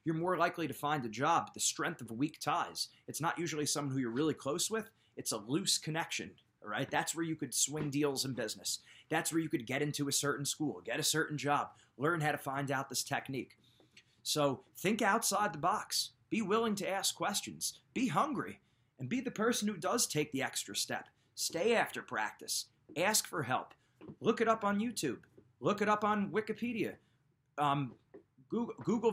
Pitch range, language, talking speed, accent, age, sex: 125-185 Hz, English, 200 wpm, American, 30-49, male